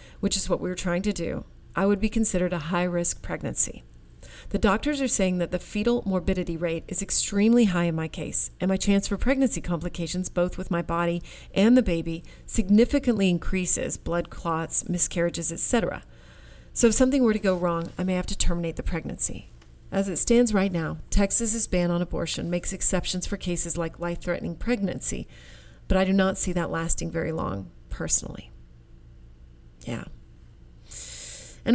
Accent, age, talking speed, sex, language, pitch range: American, 40-59, 170 wpm, female, English, 165-195 Hz